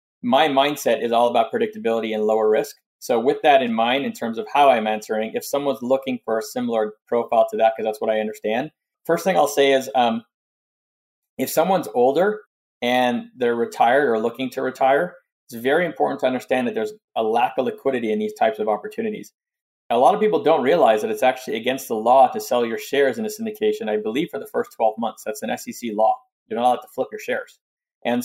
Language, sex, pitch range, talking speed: English, male, 115-155 Hz, 225 wpm